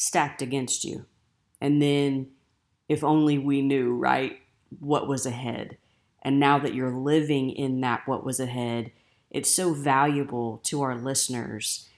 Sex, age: female, 30-49